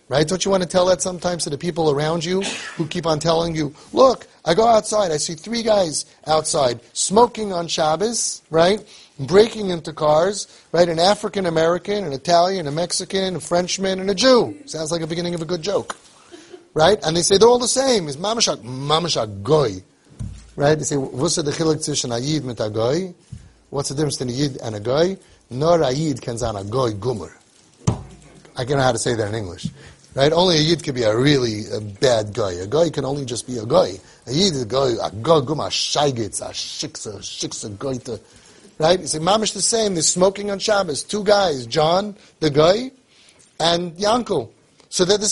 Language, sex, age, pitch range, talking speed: English, male, 30-49, 135-190 Hz, 190 wpm